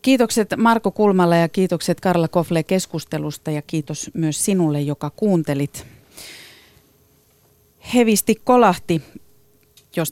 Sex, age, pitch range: female, 30-49, 145-180 Hz